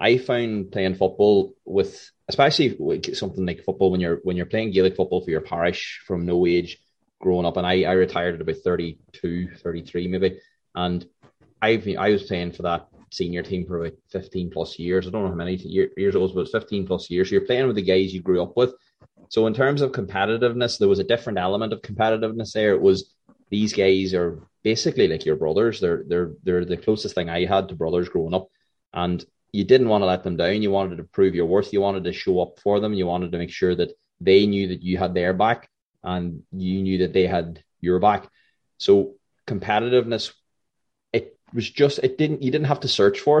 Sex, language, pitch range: male, English, 90-110 Hz